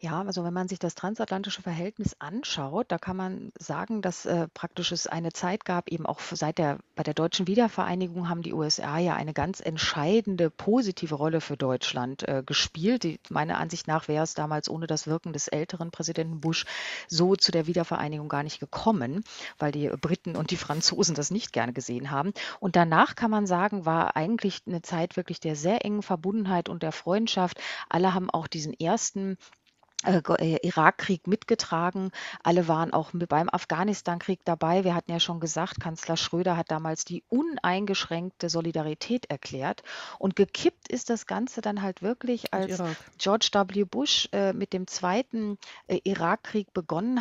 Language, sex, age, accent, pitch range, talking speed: German, female, 40-59, German, 165-195 Hz, 170 wpm